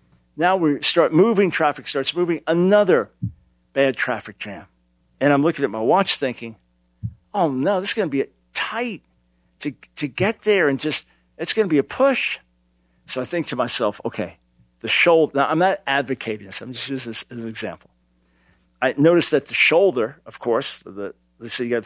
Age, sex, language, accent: 50-69, male, English, American